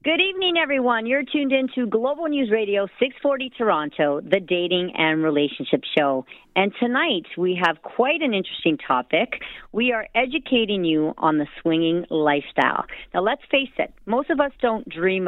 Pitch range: 170-240 Hz